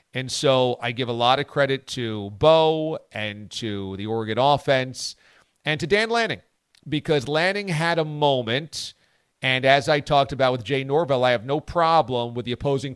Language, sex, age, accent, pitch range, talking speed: English, male, 40-59, American, 130-160 Hz, 180 wpm